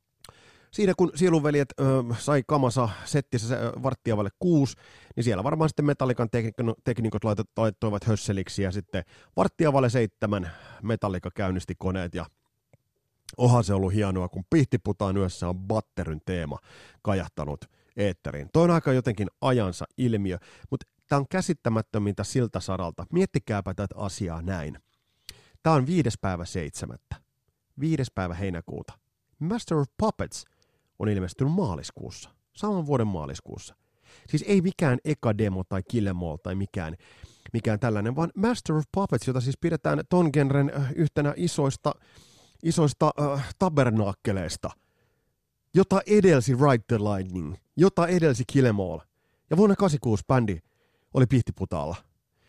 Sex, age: male, 30-49